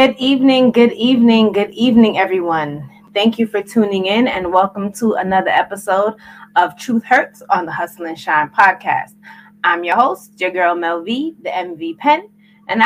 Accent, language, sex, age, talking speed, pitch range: American, English, female, 20-39, 175 wpm, 170-220 Hz